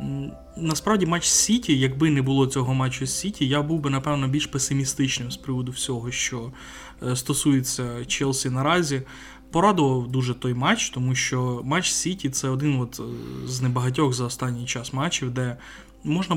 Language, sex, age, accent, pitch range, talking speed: Ukrainian, male, 20-39, native, 120-145 Hz, 155 wpm